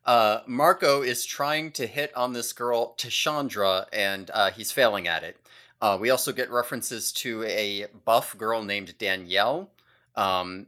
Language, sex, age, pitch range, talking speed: English, male, 30-49, 100-135 Hz, 155 wpm